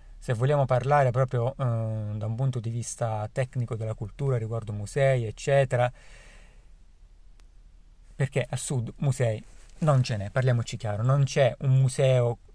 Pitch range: 115-135 Hz